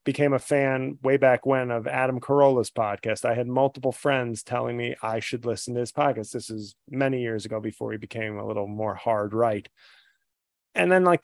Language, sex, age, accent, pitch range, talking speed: English, male, 30-49, American, 120-155 Hz, 205 wpm